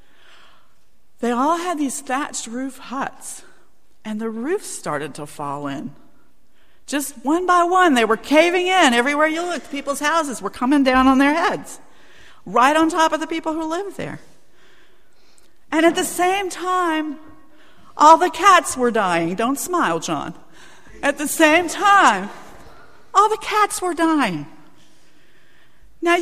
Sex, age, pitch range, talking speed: female, 50-69, 220-345 Hz, 150 wpm